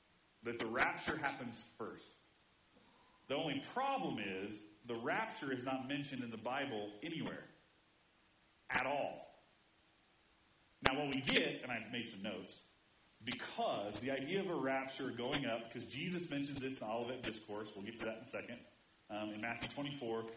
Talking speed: 160 wpm